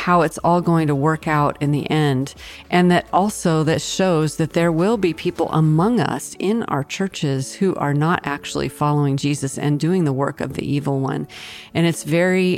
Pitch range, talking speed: 145-170 Hz, 200 wpm